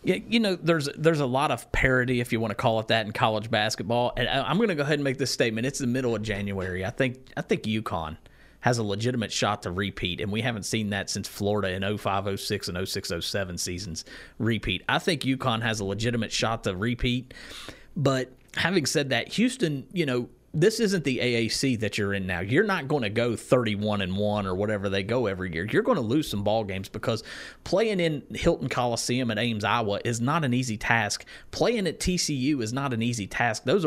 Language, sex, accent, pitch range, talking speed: English, male, American, 105-135 Hz, 220 wpm